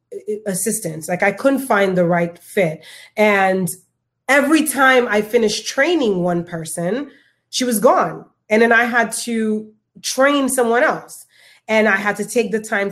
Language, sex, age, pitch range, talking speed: English, female, 30-49, 180-230 Hz, 160 wpm